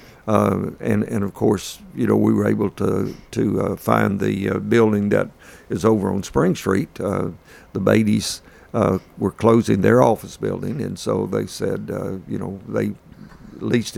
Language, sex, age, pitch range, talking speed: English, male, 50-69, 100-115 Hz, 175 wpm